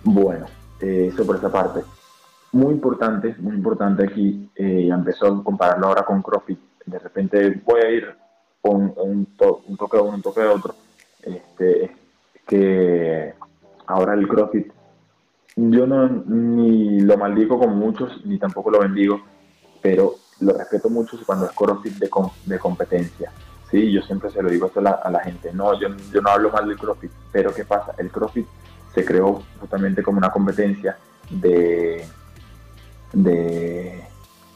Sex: male